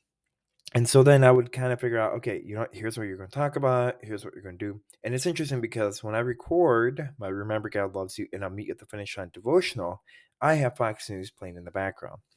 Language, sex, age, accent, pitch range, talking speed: English, male, 20-39, American, 100-135 Hz, 255 wpm